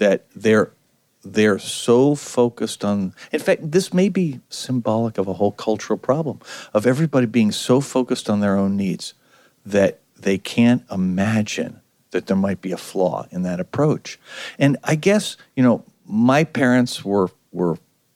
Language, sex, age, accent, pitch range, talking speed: English, male, 50-69, American, 100-150 Hz, 160 wpm